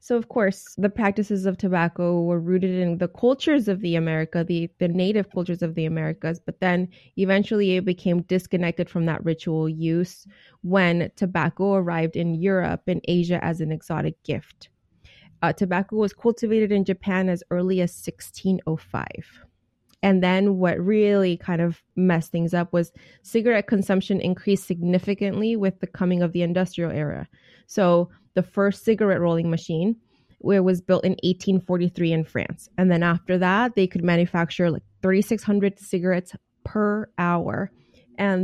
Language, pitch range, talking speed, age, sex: English, 170-195 Hz, 155 wpm, 20-39, female